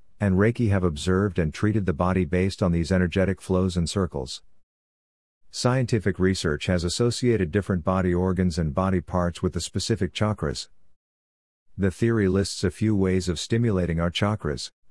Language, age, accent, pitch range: English, 50-69, American, 80-105 Hz